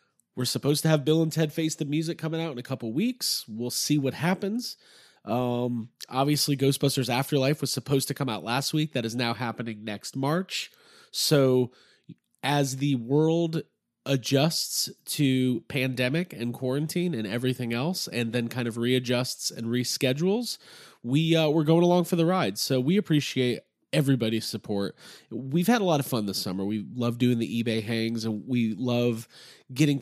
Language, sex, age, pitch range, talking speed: English, male, 30-49, 115-145 Hz, 175 wpm